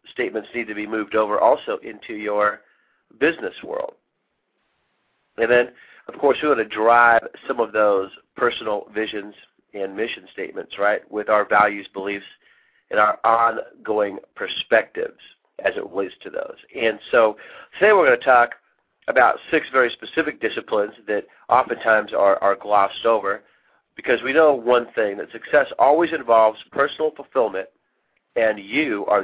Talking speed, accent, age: 150 wpm, American, 40-59